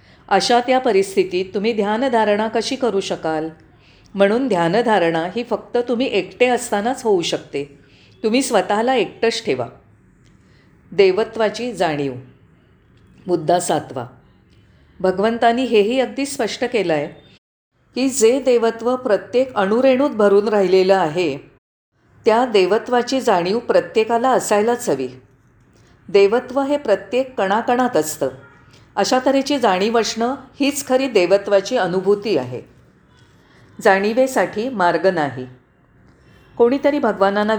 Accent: native